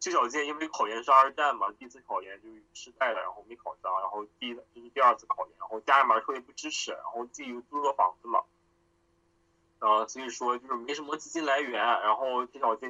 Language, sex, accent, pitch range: Chinese, male, native, 105-125 Hz